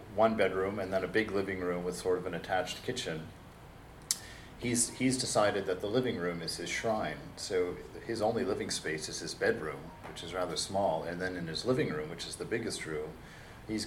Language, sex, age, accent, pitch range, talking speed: English, male, 40-59, American, 90-130 Hz, 210 wpm